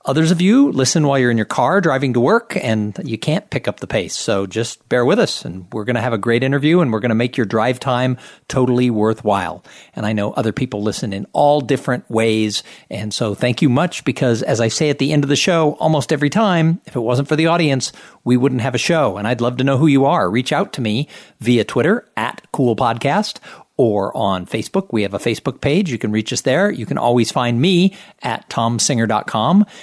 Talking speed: 235 wpm